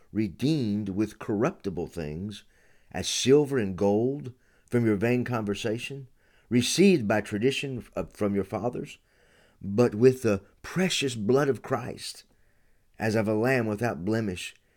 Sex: male